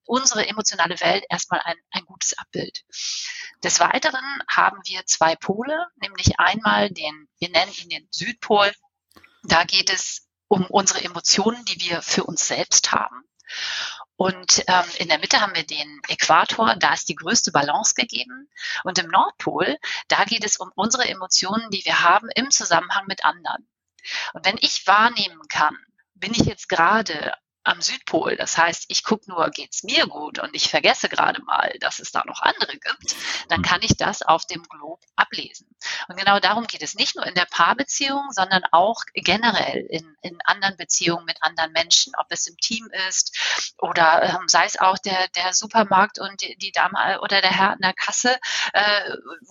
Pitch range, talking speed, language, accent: 180-225 Hz, 180 wpm, German, German